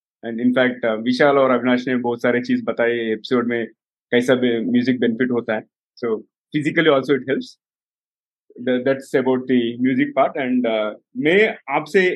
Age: 30-49